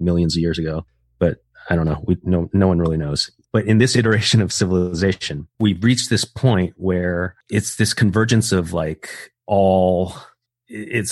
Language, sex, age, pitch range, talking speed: English, male, 30-49, 85-105 Hz, 165 wpm